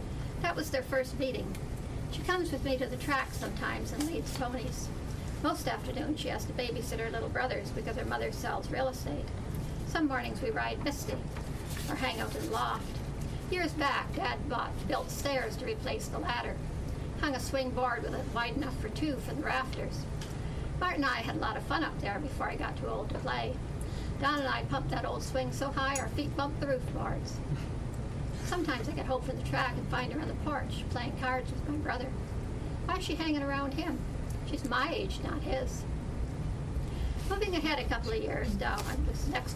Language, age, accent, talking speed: English, 50-69, American, 205 wpm